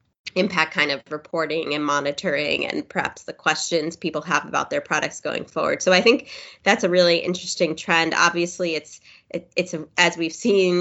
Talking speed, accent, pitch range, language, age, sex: 185 wpm, American, 155-180 Hz, English, 20-39, female